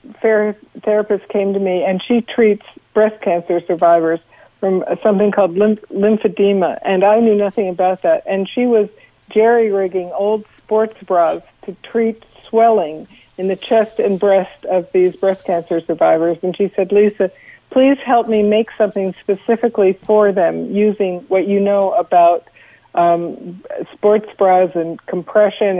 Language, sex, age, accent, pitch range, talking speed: English, female, 60-79, American, 180-215 Hz, 145 wpm